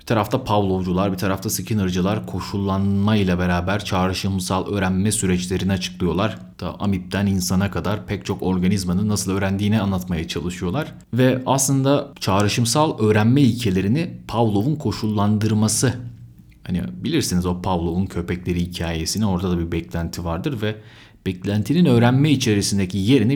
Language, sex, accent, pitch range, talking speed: Turkish, male, native, 90-115 Hz, 120 wpm